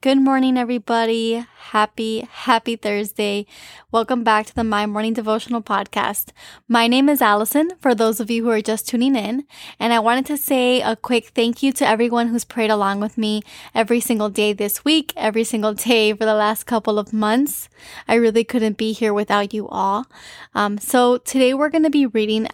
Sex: female